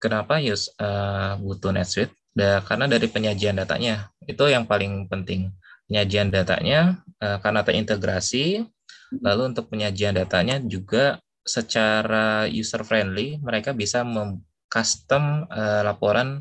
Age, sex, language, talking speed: 20-39, male, Indonesian, 115 wpm